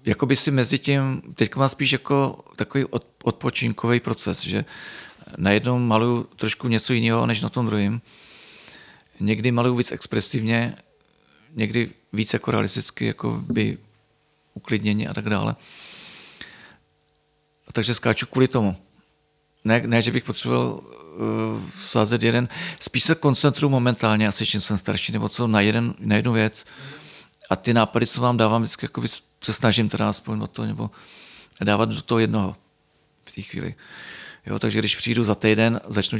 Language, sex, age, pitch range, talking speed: Czech, male, 40-59, 105-120 Hz, 150 wpm